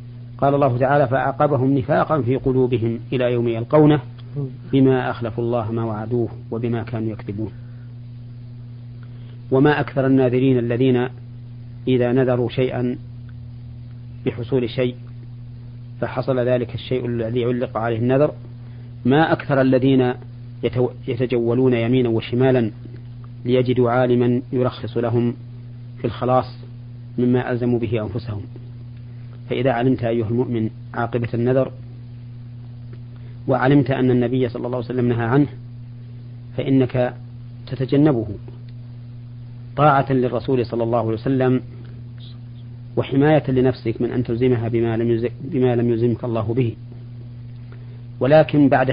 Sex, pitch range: male, 120-125 Hz